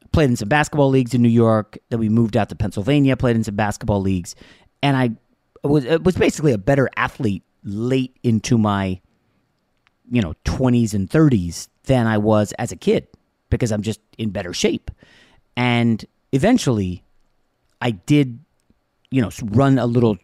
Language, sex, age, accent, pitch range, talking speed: English, male, 30-49, American, 105-135 Hz, 165 wpm